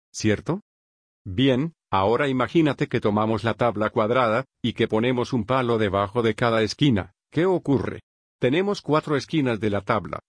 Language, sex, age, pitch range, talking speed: Spanish, male, 50-69, 110-135 Hz, 150 wpm